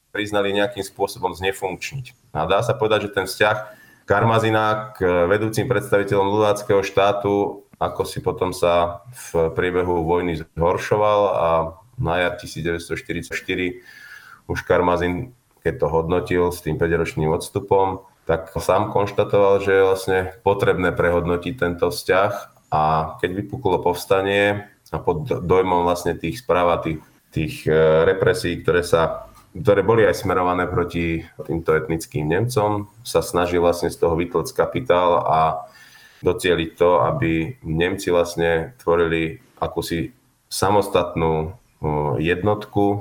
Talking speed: 125 wpm